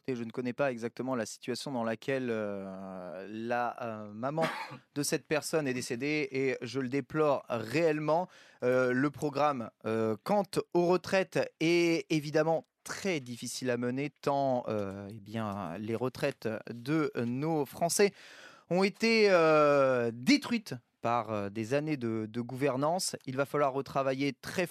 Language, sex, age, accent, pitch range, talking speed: French, male, 30-49, French, 130-175 Hz, 140 wpm